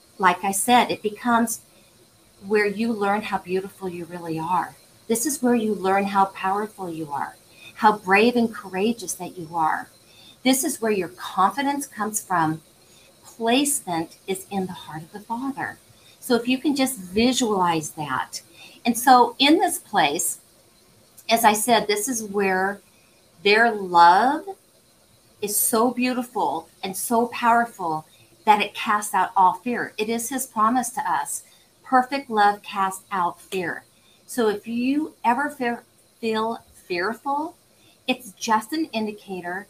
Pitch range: 185-235 Hz